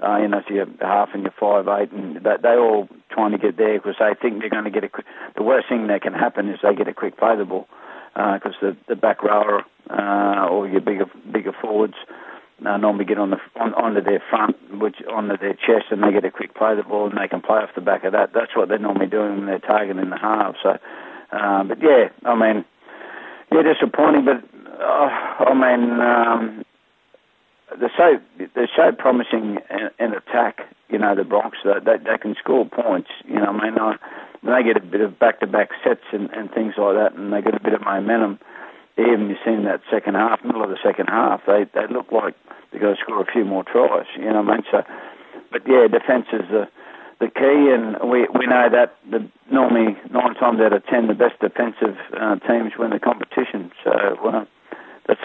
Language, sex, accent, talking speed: English, male, Australian, 225 wpm